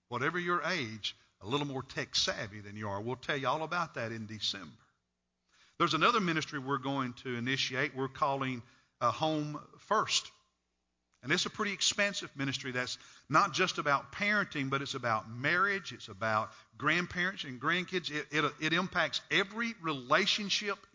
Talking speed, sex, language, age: 160 wpm, male, English, 50-69